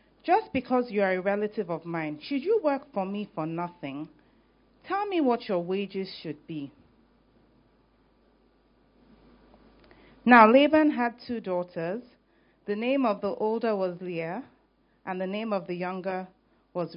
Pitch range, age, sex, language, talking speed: 175-255 Hz, 40-59, female, English, 145 wpm